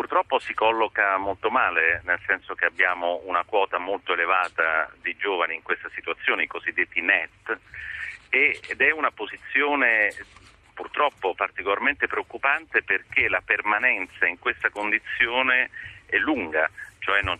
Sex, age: male, 40-59